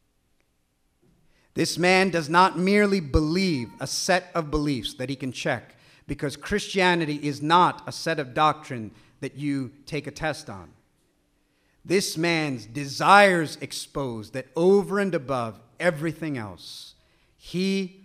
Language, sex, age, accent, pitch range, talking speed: English, male, 40-59, American, 145-210 Hz, 130 wpm